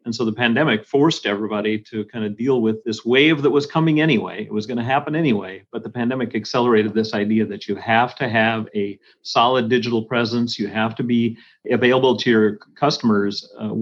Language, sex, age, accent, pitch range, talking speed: English, male, 40-59, American, 110-135 Hz, 205 wpm